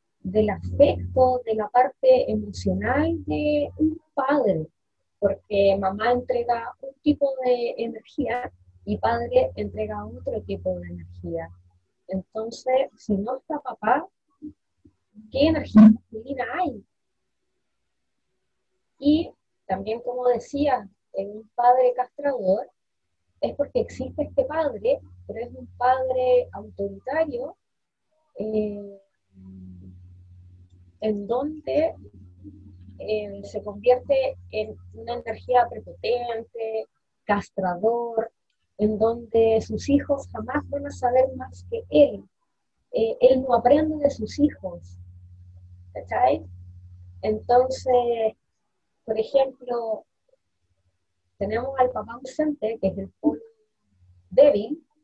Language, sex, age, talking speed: Spanish, female, 20-39, 100 wpm